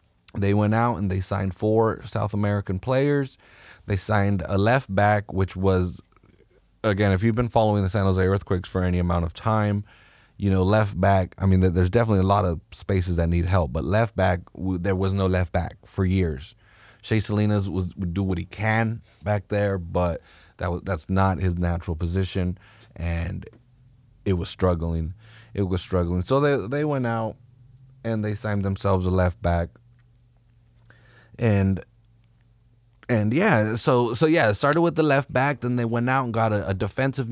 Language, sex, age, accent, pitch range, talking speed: English, male, 30-49, American, 95-120 Hz, 180 wpm